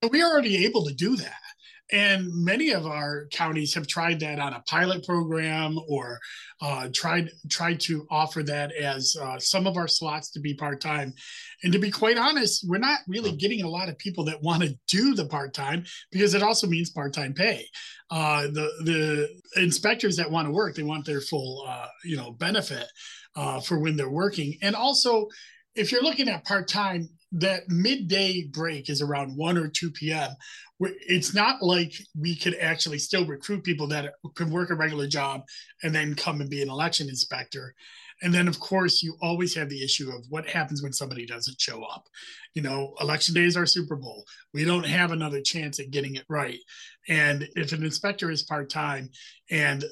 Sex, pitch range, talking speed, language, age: male, 145-185 Hz, 195 wpm, English, 30-49